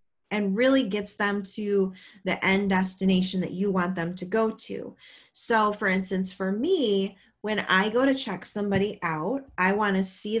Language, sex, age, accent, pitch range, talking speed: English, female, 30-49, American, 180-210 Hz, 180 wpm